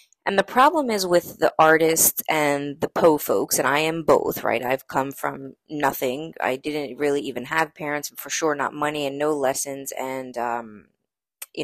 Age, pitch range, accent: 20-39, 130-160 Hz, American